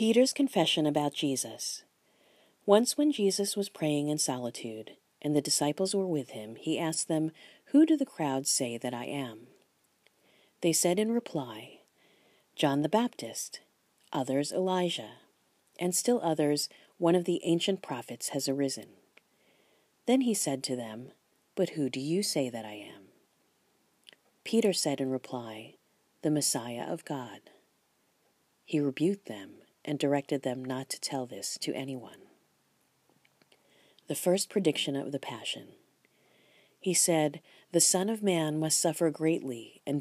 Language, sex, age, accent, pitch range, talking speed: English, female, 40-59, American, 135-185 Hz, 145 wpm